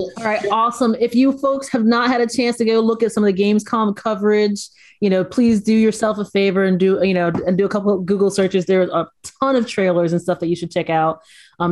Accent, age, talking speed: American, 30-49, 260 wpm